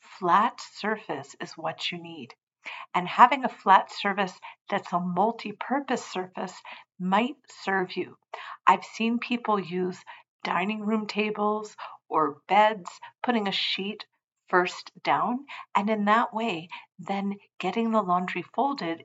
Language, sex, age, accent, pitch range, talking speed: English, female, 50-69, American, 180-220 Hz, 130 wpm